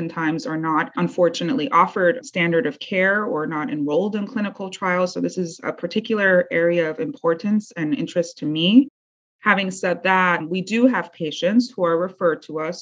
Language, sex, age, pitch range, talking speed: English, female, 30-49, 165-210 Hz, 180 wpm